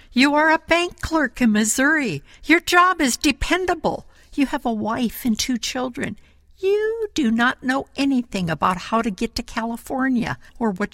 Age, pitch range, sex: 60-79, 195-270 Hz, female